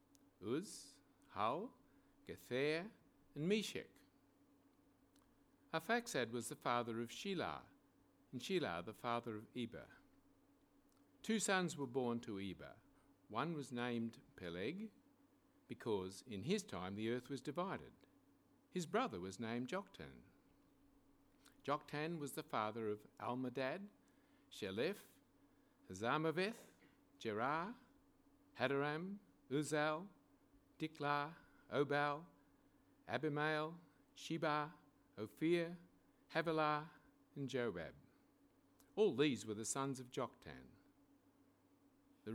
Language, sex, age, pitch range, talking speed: English, male, 60-79, 120-185 Hz, 95 wpm